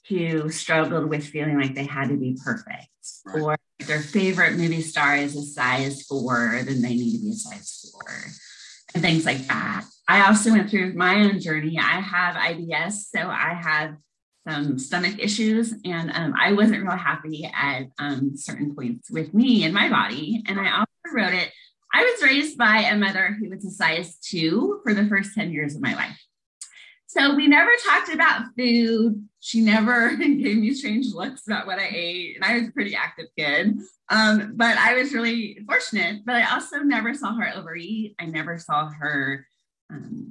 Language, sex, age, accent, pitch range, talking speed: English, female, 30-49, American, 155-225 Hz, 190 wpm